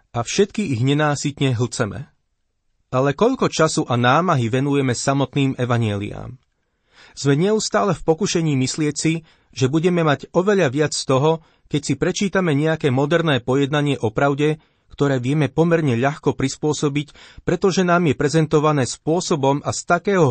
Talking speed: 135 wpm